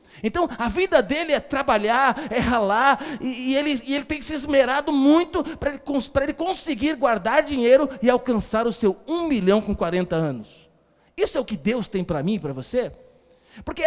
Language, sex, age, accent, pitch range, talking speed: Portuguese, male, 40-59, Brazilian, 200-285 Hz, 190 wpm